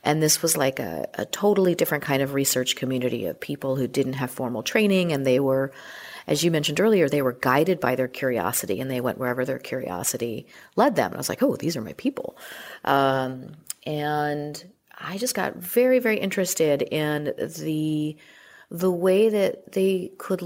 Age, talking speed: 40-59, 190 wpm